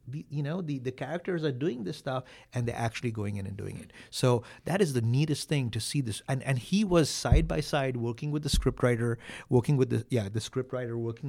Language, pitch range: English, 105-130 Hz